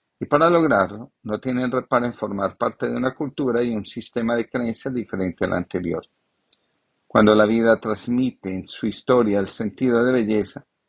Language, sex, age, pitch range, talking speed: Spanish, male, 50-69, 105-130 Hz, 175 wpm